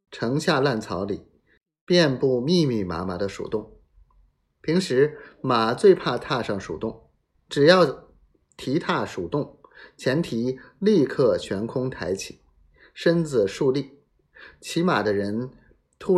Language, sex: Chinese, male